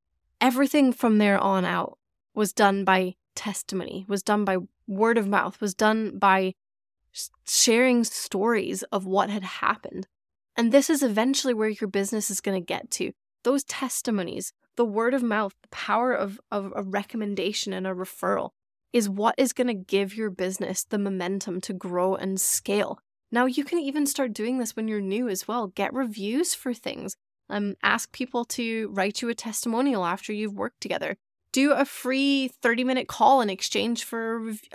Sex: female